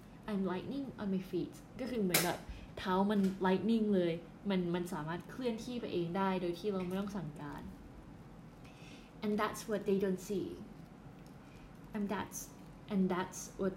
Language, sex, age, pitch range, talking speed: English, female, 10-29, 170-210 Hz, 85 wpm